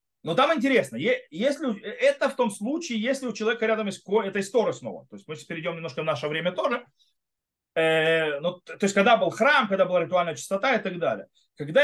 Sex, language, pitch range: male, Russian, 190-270 Hz